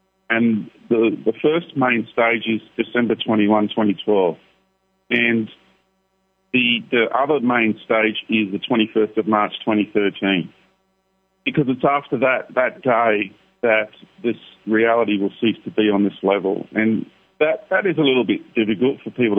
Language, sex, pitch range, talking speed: English, male, 105-160 Hz, 150 wpm